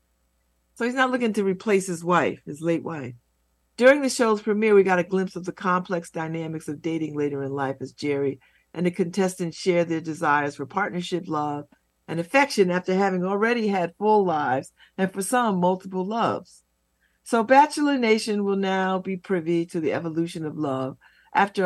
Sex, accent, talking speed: female, American, 180 wpm